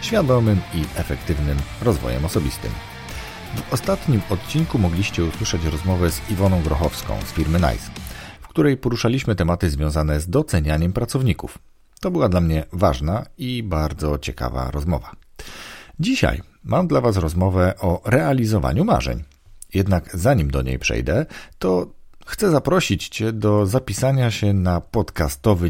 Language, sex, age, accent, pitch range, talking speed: Polish, male, 40-59, native, 75-110 Hz, 130 wpm